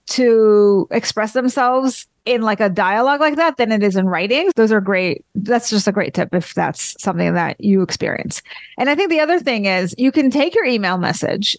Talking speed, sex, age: 210 wpm, female, 30-49